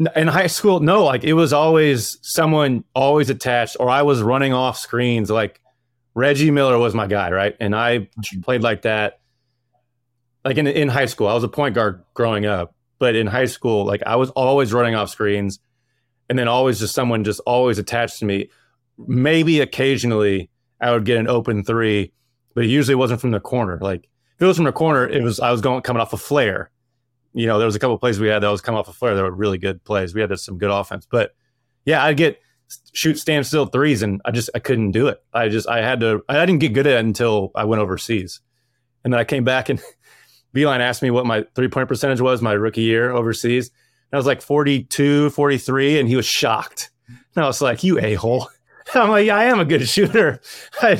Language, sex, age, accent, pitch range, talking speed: English, male, 30-49, American, 110-140 Hz, 230 wpm